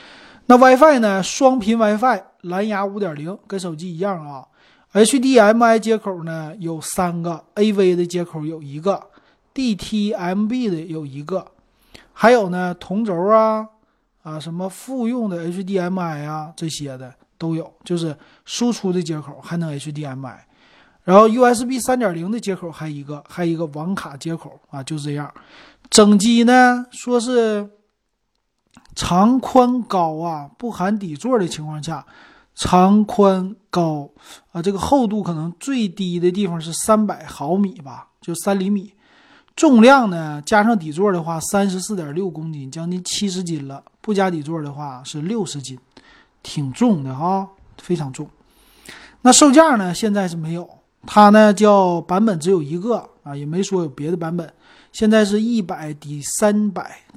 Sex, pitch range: male, 160-215 Hz